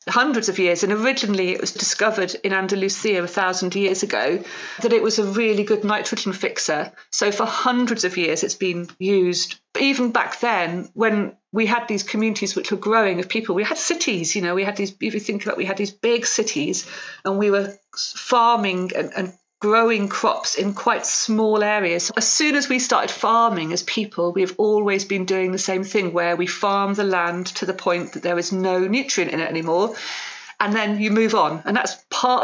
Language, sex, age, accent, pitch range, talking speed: English, female, 40-59, British, 185-225 Hz, 205 wpm